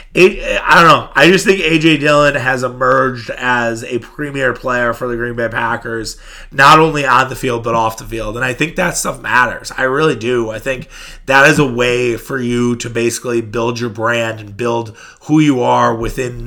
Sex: male